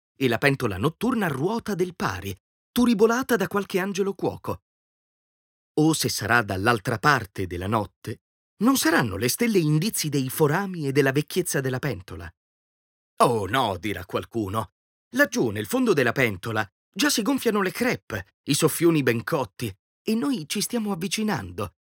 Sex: male